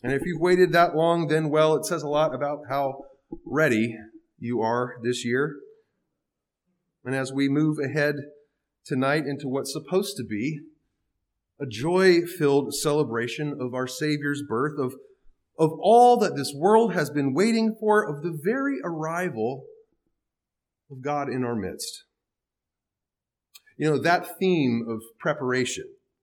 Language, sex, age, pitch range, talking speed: English, male, 30-49, 130-180 Hz, 140 wpm